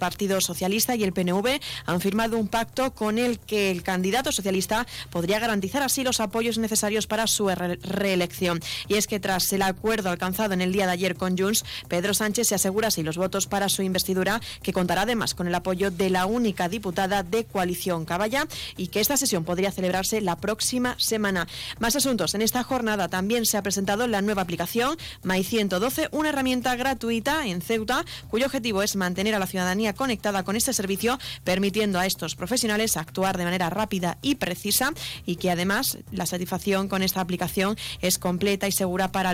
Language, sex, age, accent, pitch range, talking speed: Spanish, female, 20-39, Spanish, 180-215 Hz, 190 wpm